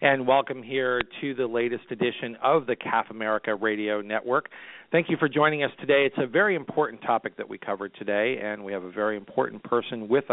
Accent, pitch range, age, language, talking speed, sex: American, 110-130 Hz, 40-59, English, 210 wpm, male